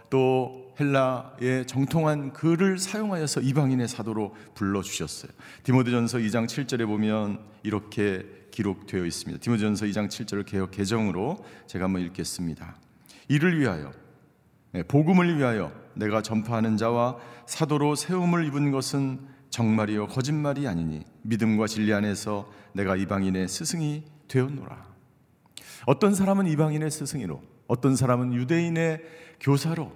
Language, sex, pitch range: Korean, male, 115-170 Hz